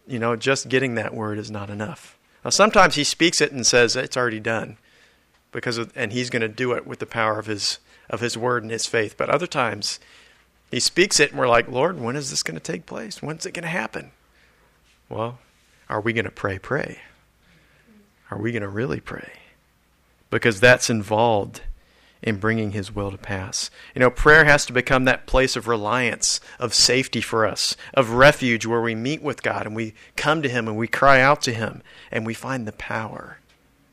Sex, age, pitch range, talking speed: male, 40-59, 105-125 Hz, 210 wpm